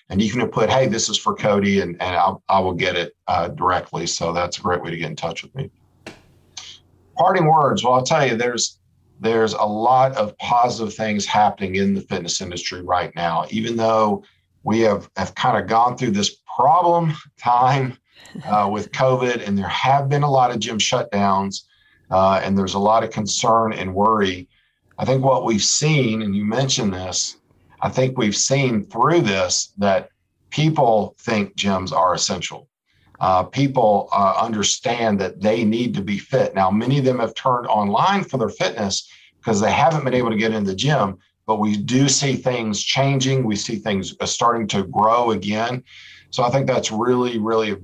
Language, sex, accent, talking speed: English, male, American, 190 wpm